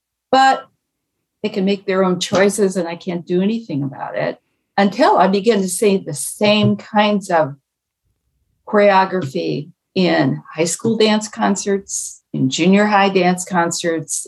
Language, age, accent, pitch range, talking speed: English, 60-79, American, 170-215 Hz, 145 wpm